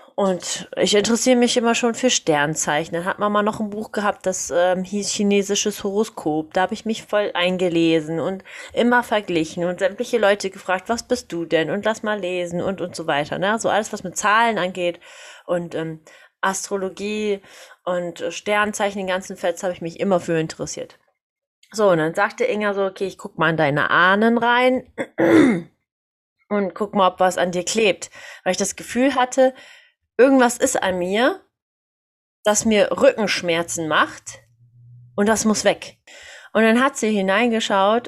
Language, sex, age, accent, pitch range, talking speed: German, female, 30-49, German, 175-225 Hz, 175 wpm